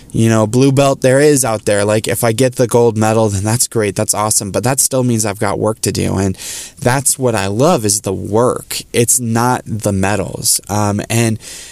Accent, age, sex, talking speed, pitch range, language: American, 20-39, male, 220 wpm, 105-130 Hz, English